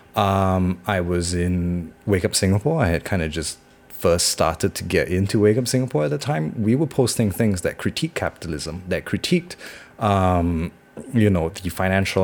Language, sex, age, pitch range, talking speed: English, male, 30-49, 90-115 Hz, 180 wpm